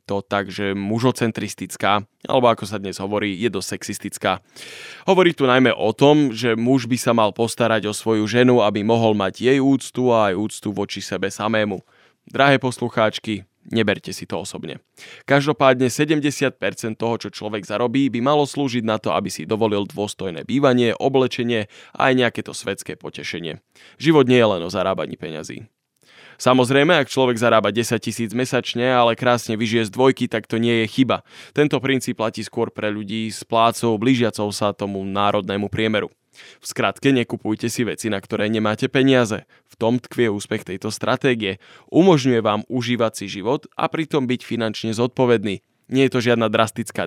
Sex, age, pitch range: male, 20-39, 105-125 Hz